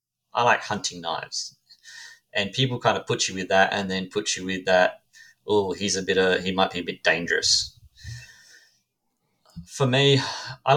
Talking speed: 180 wpm